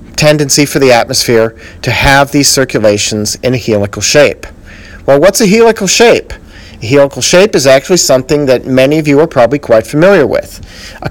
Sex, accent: male, American